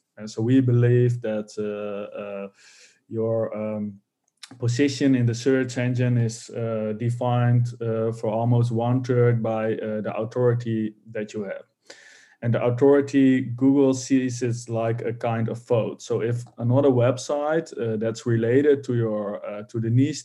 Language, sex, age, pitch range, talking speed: English, male, 20-39, 115-130 Hz, 155 wpm